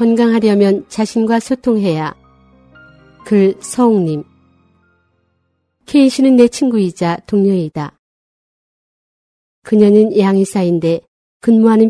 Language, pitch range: Korean, 175-230 Hz